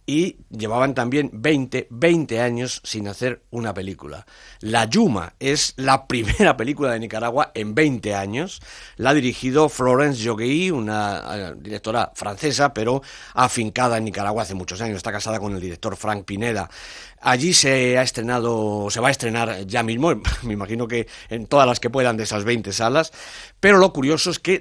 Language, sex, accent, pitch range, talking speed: English, male, Spanish, 110-135 Hz, 165 wpm